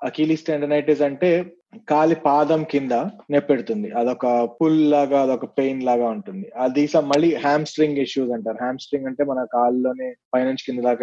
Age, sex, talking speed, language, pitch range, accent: 20-39, male, 160 wpm, Telugu, 130-175 Hz, native